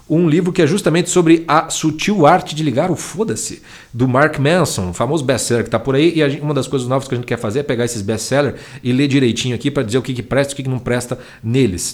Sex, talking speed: male, 275 wpm